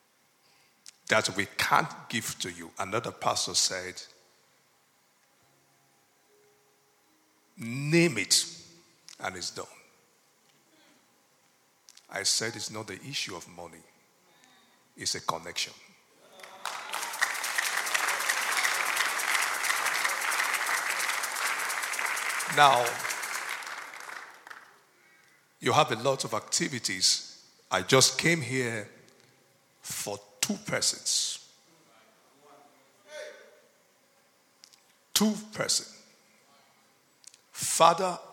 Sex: male